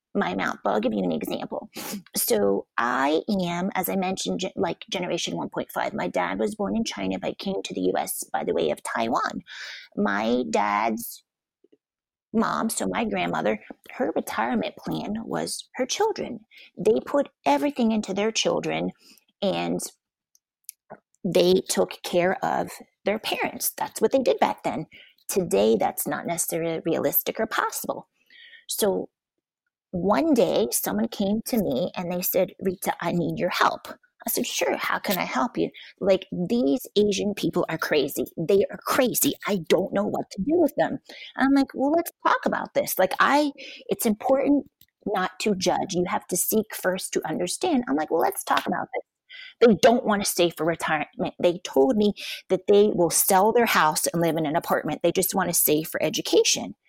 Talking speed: 175 wpm